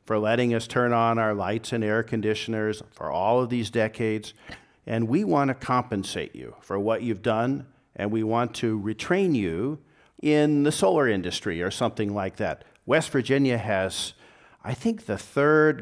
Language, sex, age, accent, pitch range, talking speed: English, male, 50-69, American, 105-125 Hz, 175 wpm